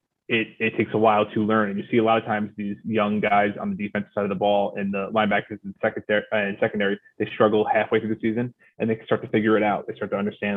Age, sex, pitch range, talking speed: 20-39, male, 105-115 Hz, 285 wpm